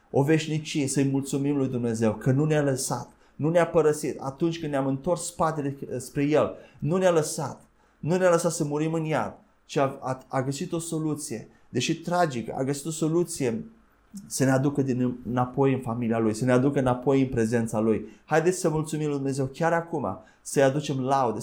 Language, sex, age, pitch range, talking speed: Romanian, male, 30-49, 125-160 Hz, 190 wpm